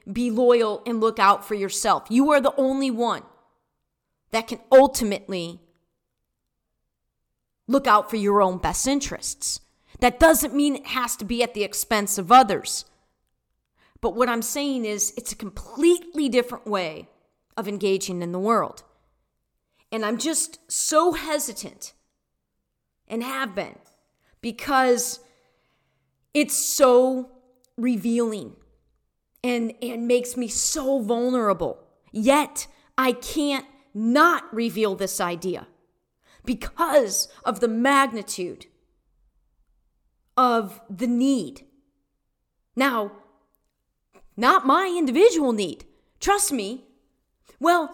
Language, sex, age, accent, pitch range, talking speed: English, female, 40-59, American, 215-275 Hz, 110 wpm